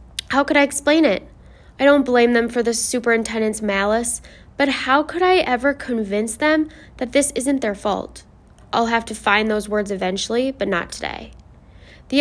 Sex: female